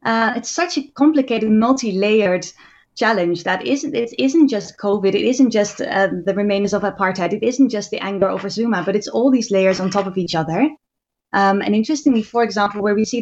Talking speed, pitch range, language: 205 wpm, 190-235 Hz, English